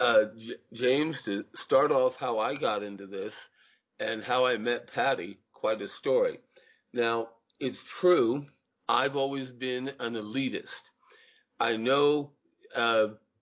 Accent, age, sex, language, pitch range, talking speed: American, 50-69, male, English, 120-160 Hz, 135 wpm